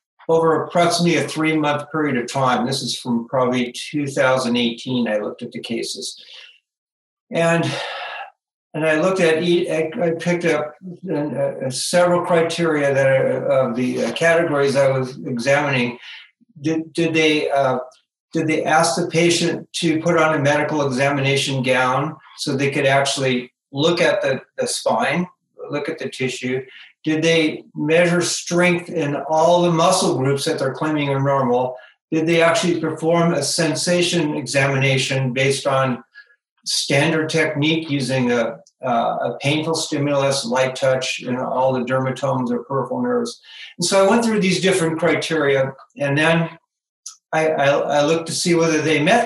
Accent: American